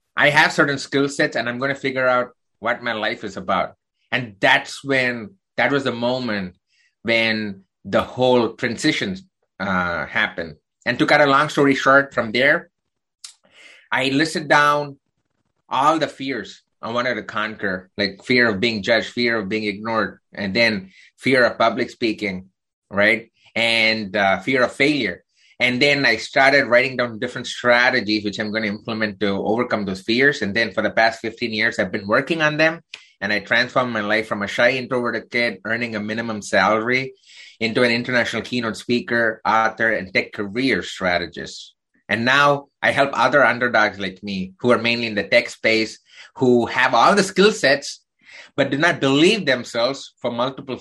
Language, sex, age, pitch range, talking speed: English, male, 30-49, 110-135 Hz, 180 wpm